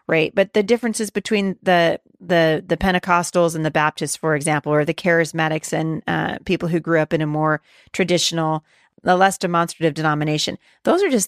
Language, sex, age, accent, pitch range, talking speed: English, female, 40-59, American, 160-195 Hz, 180 wpm